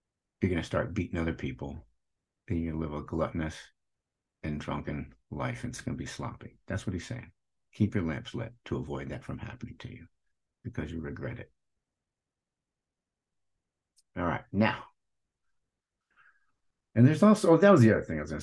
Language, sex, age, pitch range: English, male, 60-79, 90-120 Hz